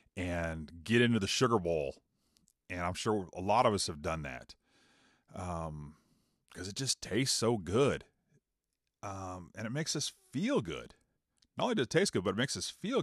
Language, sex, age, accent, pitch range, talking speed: English, male, 40-59, American, 90-125 Hz, 190 wpm